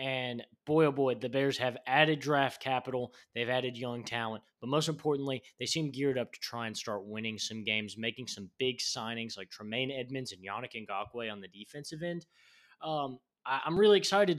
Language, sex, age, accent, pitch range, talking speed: English, male, 20-39, American, 125-155 Hz, 190 wpm